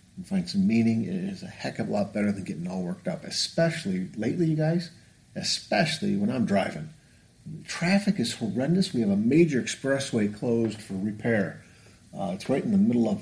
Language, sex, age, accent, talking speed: English, male, 50-69, American, 195 wpm